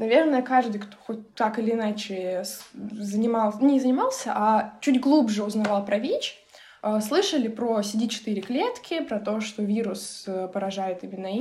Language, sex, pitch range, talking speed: Russian, female, 210-280 Hz, 130 wpm